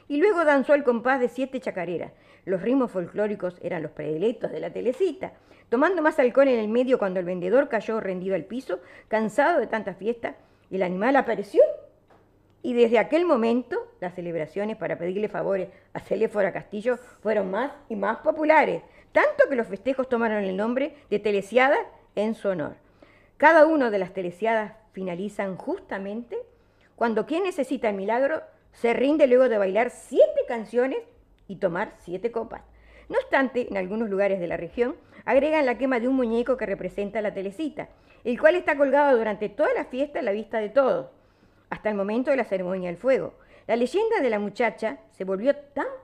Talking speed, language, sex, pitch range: 175 wpm, Spanish, female, 195-275 Hz